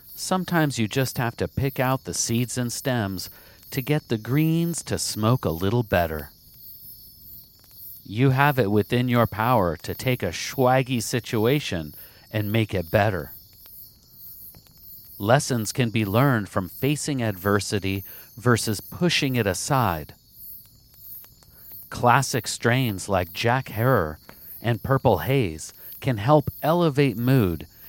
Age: 40-59